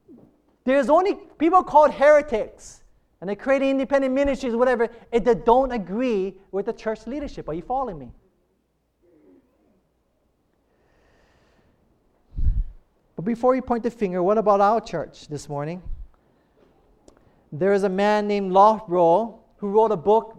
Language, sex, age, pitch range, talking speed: English, male, 30-49, 205-275 Hz, 135 wpm